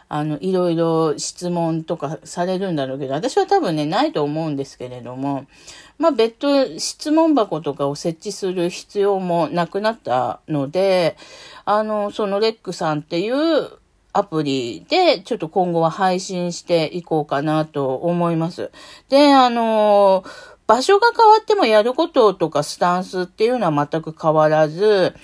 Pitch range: 155-225 Hz